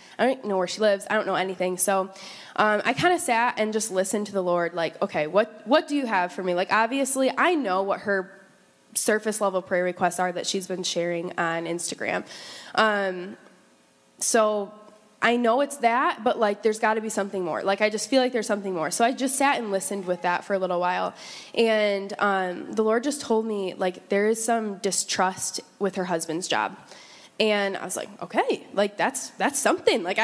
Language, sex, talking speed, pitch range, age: English, female, 210 wpm, 185-230 Hz, 10-29